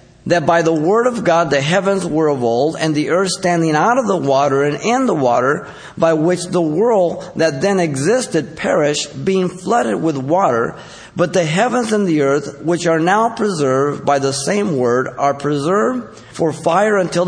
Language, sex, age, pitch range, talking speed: English, male, 50-69, 145-200 Hz, 190 wpm